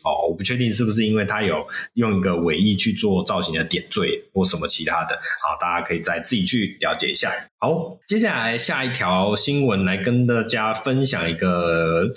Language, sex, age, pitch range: Chinese, male, 20-39, 100-155 Hz